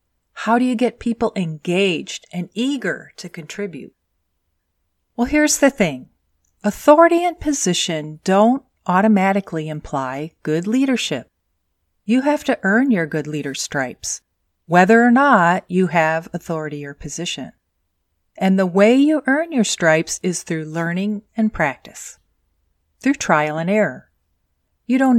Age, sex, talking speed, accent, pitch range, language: 40-59, female, 135 wpm, American, 145-215 Hz, English